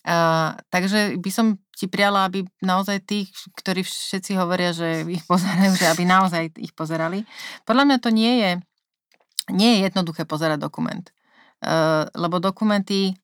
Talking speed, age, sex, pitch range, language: 150 wpm, 30-49, female, 150-175 Hz, Slovak